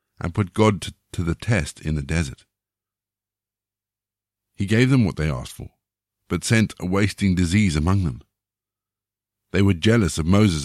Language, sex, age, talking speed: English, male, 50-69, 160 wpm